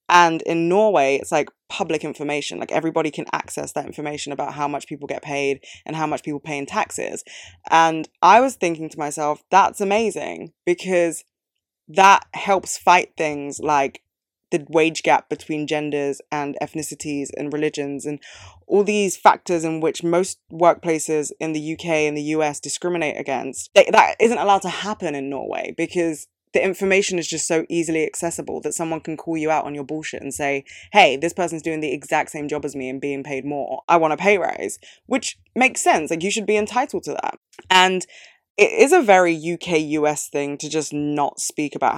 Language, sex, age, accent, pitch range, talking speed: English, female, 20-39, British, 145-175 Hz, 190 wpm